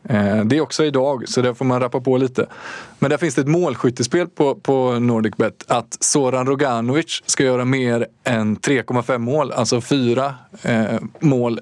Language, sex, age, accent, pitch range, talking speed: English, male, 20-39, Swedish, 120-145 Hz, 165 wpm